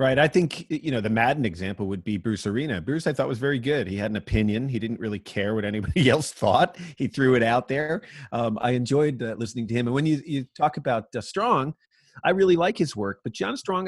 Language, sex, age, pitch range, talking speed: English, male, 40-59, 115-150 Hz, 250 wpm